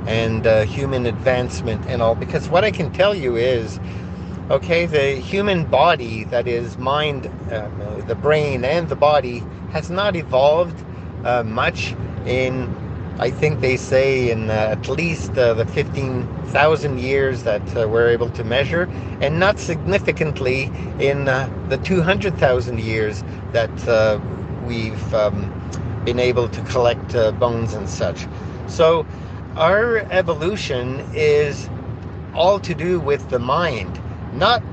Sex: male